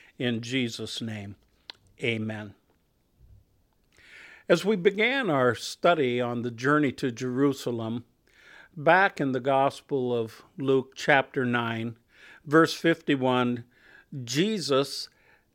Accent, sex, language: American, male, English